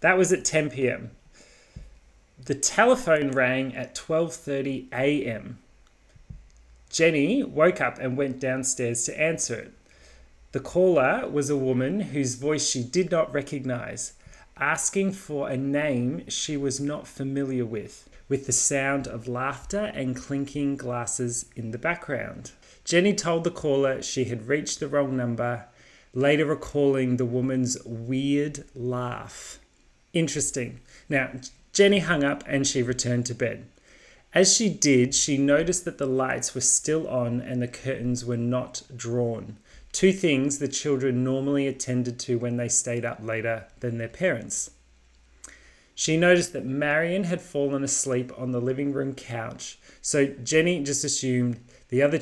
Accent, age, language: Australian, 30-49, English